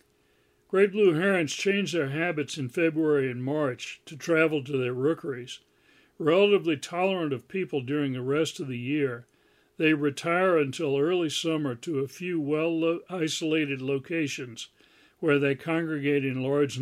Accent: American